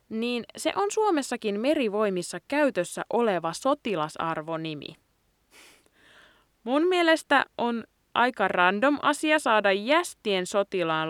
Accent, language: native, Finnish